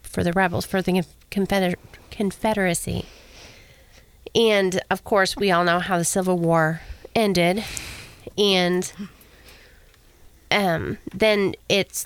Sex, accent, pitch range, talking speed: female, American, 175-205 Hz, 105 wpm